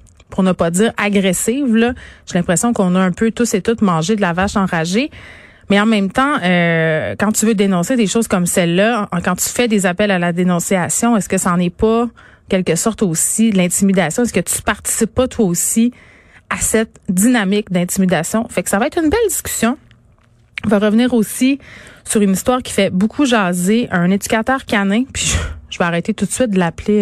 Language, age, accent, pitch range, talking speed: French, 30-49, Canadian, 175-220 Hz, 210 wpm